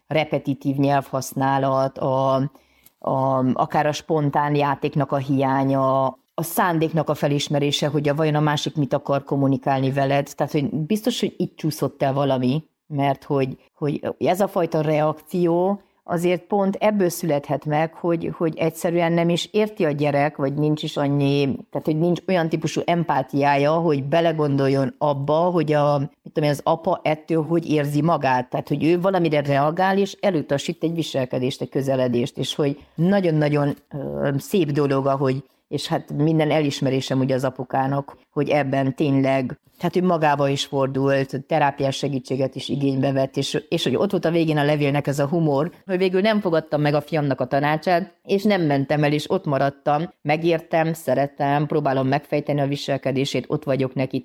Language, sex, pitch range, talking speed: Hungarian, female, 135-160 Hz, 165 wpm